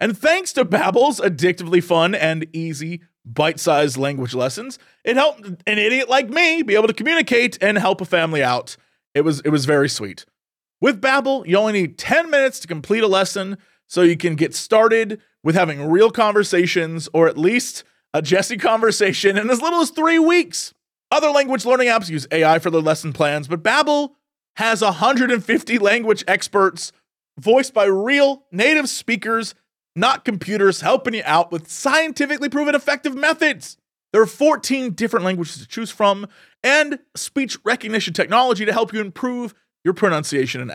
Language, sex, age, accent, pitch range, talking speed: English, male, 30-49, American, 160-255 Hz, 170 wpm